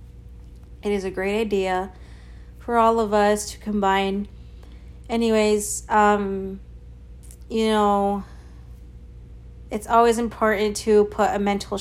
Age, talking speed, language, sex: 30-49, 110 wpm, English, female